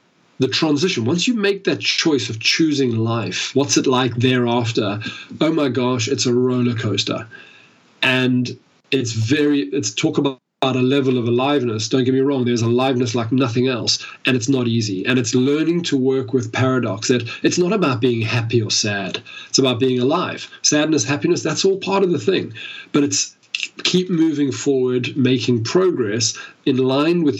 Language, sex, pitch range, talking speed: English, male, 120-145 Hz, 175 wpm